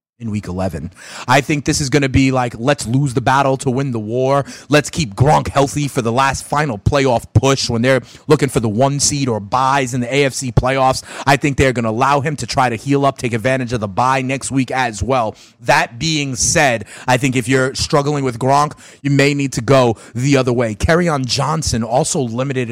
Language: English